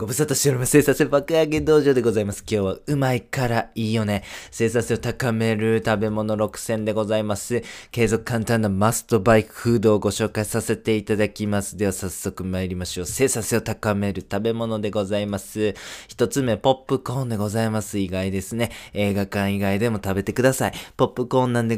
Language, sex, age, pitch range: Japanese, male, 20-39, 100-120 Hz